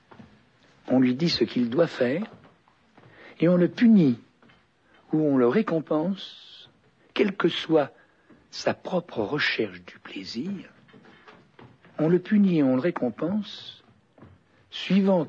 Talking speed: 120 wpm